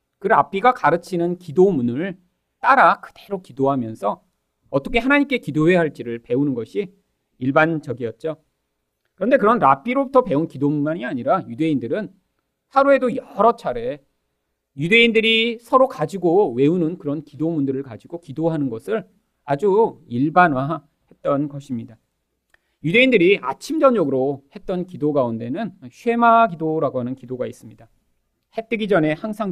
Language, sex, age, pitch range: Korean, male, 40-59, 130-210 Hz